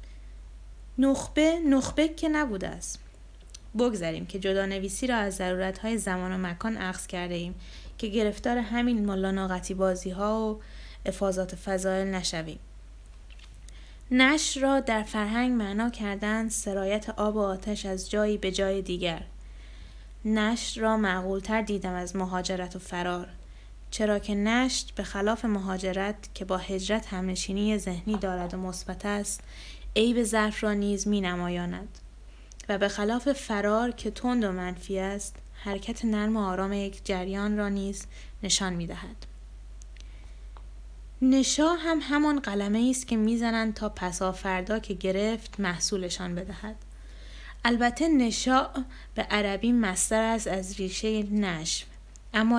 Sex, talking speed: female, 135 wpm